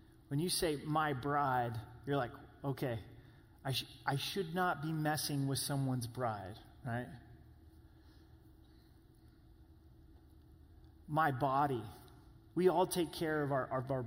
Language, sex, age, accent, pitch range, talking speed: English, male, 30-49, American, 120-175 Hz, 125 wpm